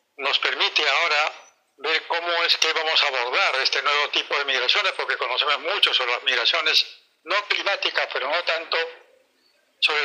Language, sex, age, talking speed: Spanish, male, 70-89, 160 wpm